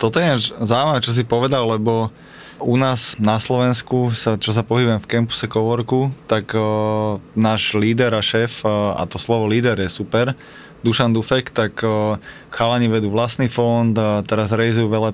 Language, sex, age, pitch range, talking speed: Slovak, male, 20-39, 110-125 Hz, 165 wpm